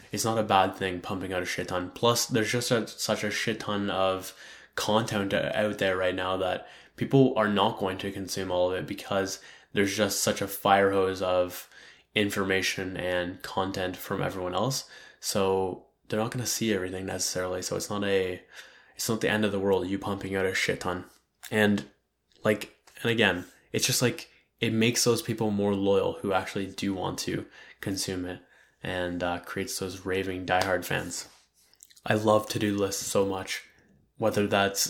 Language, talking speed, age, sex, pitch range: English, 185 wpm, 10-29, male, 95-110 Hz